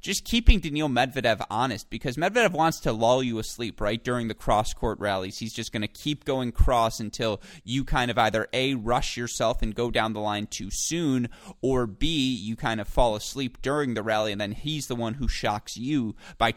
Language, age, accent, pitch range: English, 30-49, American, 110-150 Hz